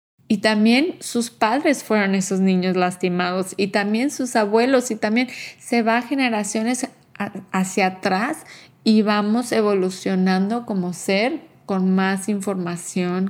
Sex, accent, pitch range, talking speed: female, Mexican, 185-215 Hz, 120 wpm